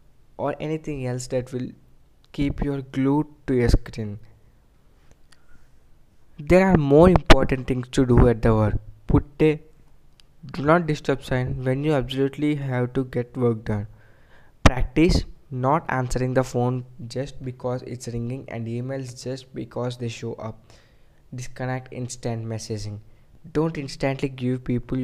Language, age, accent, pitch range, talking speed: English, 20-39, Indian, 115-135 Hz, 140 wpm